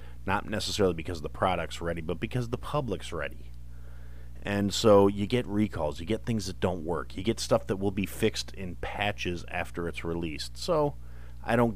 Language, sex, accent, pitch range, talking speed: English, male, American, 75-120 Hz, 190 wpm